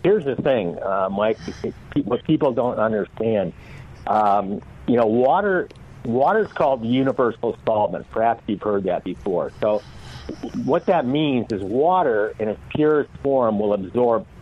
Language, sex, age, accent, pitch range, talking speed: English, male, 60-79, American, 105-135 Hz, 145 wpm